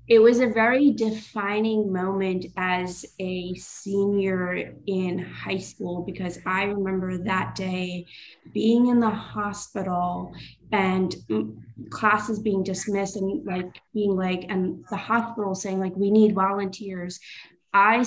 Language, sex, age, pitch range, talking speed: English, female, 20-39, 185-220 Hz, 125 wpm